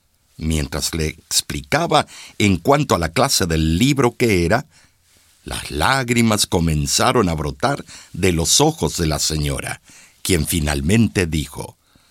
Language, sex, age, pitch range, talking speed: Spanish, male, 60-79, 80-115 Hz, 130 wpm